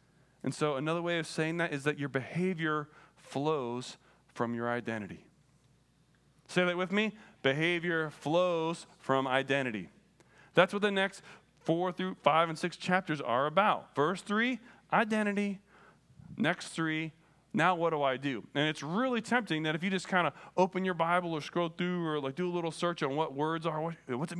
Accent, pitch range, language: American, 140-180 Hz, English